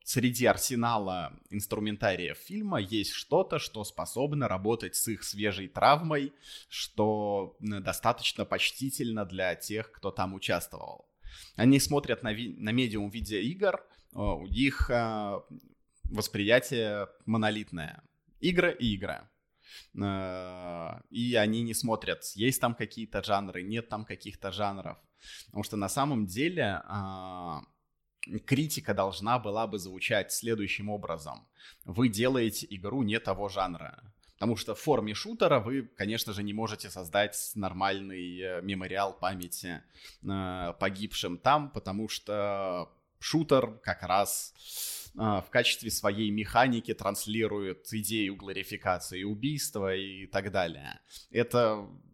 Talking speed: 110 wpm